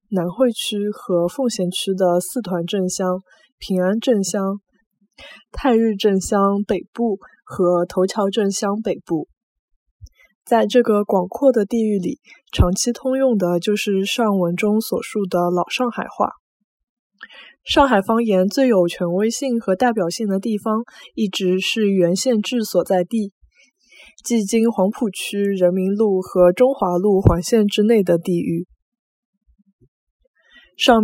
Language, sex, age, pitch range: Chinese, female, 20-39, 180-230 Hz